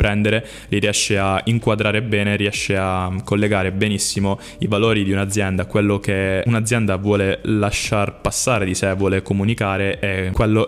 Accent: native